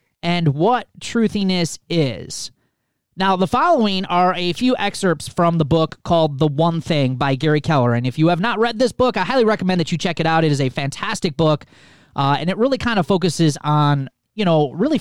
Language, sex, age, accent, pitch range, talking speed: English, male, 20-39, American, 135-185 Hz, 210 wpm